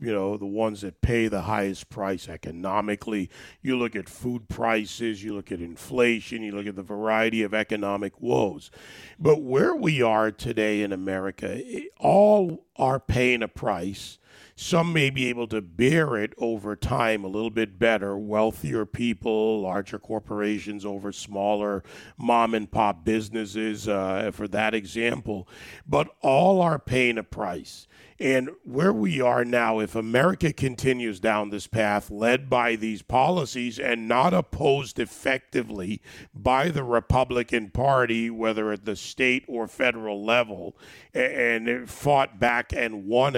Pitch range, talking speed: 105-125 Hz, 150 wpm